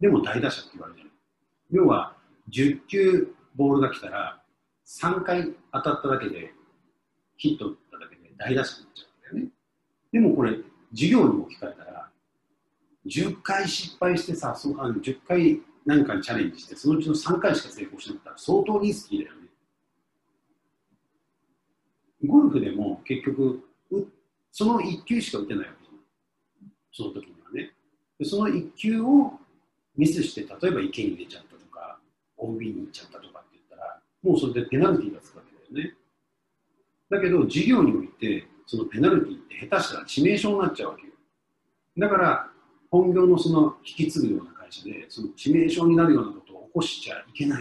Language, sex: Japanese, male